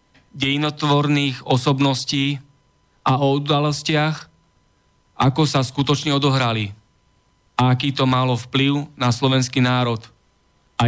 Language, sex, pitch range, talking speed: Slovak, male, 120-140 Hz, 100 wpm